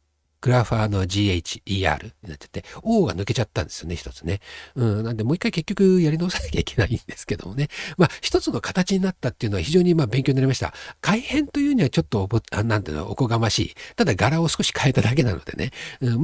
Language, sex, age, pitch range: Japanese, male, 60-79, 100-140 Hz